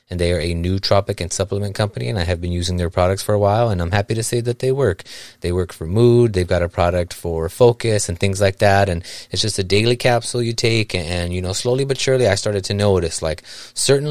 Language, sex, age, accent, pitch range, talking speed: English, male, 30-49, American, 90-105 Hz, 265 wpm